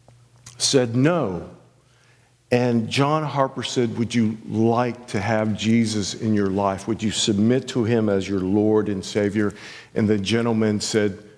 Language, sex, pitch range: English, male, 105-140 Hz